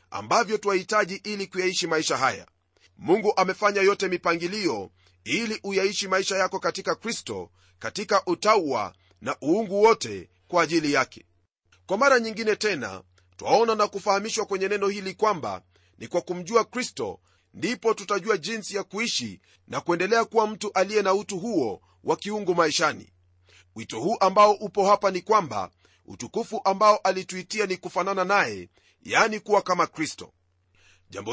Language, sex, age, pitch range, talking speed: Swahili, male, 40-59, 125-210 Hz, 140 wpm